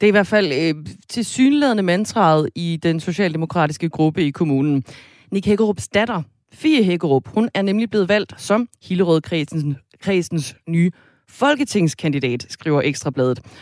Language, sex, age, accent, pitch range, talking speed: Danish, female, 30-49, native, 150-200 Hz, 145 wpm